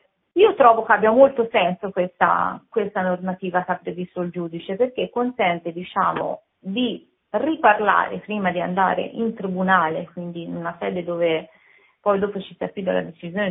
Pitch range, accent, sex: 170-210 Hz, native, female